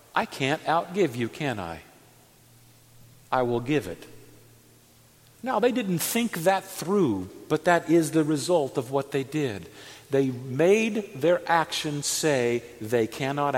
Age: 50-69